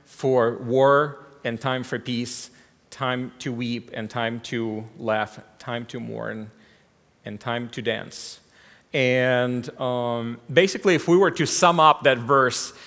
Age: 40-59